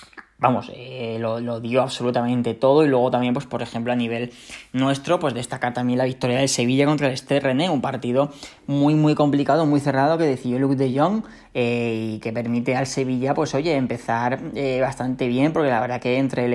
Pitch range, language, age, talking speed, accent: 120-140 Hz, Spanish, 10-29, 205 wpm, Spanish